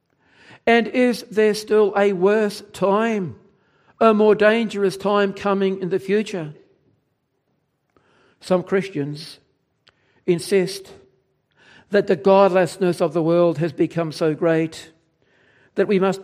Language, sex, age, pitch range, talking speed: English, male, 60-79, 180-225 Hz, 115 wpm